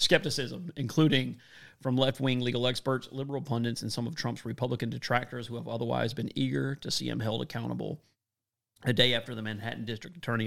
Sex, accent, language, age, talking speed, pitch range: male, American, English, 30-49, 180 wpm, 95-120 Hz